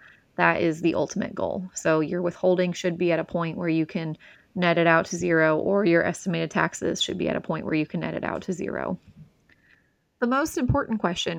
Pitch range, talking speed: 170-195 Hz, 220 wpm